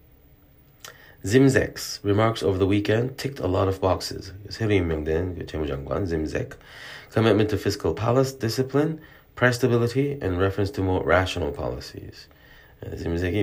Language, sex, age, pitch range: Korean, male, 30-49, 90-110 Hz